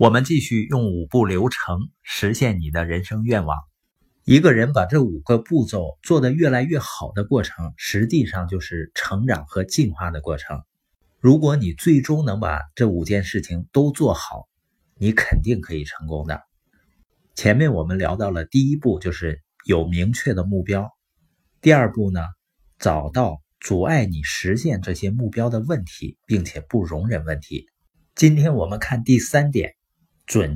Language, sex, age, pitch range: Chinese, male, 50-69, 85-130 Hz